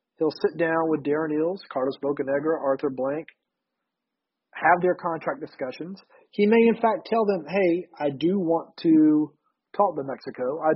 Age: 40-59